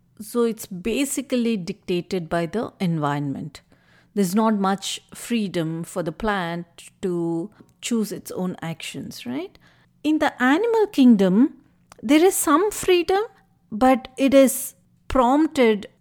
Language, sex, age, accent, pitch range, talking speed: English, female, 50-69, Indian, 205-285 Hz, 120 wpm